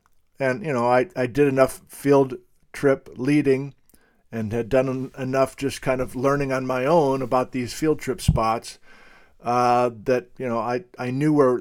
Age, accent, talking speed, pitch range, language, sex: 50-69, American, 180 wpm, 115-135 Hz, English, male